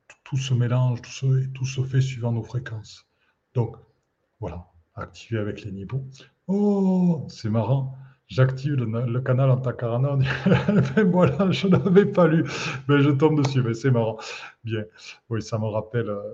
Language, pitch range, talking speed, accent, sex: French, 120-135 Hz, 160 wpm, French, male